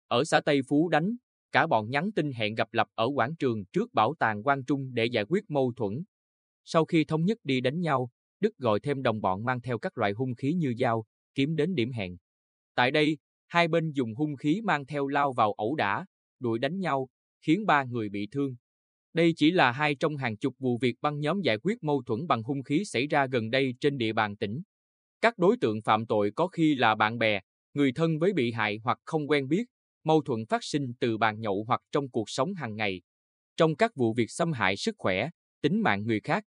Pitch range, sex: 110-155 Hz, male